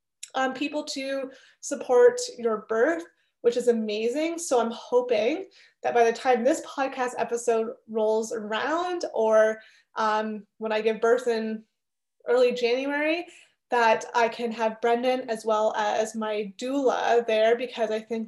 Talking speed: 145 wpm